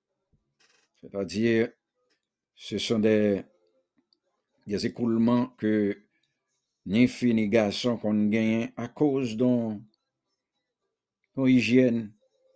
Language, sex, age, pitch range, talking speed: English, male, 60-79, 105-130 Hz, 70 wpm